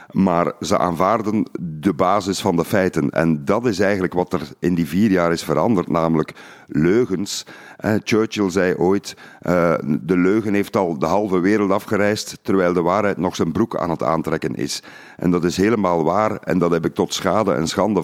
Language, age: Dutch, 50-69